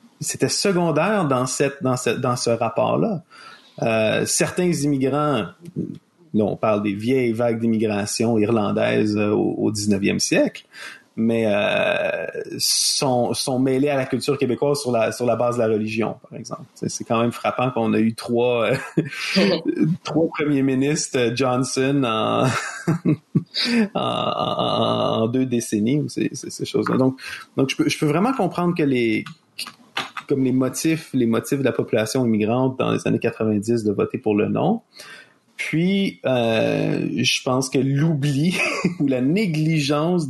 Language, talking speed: French, 150 wpm